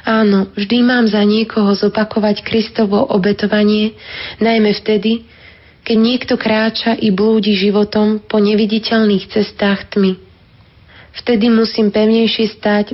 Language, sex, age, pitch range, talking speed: Slovak, female, 20-39, 200-220 Hz, 110 wpm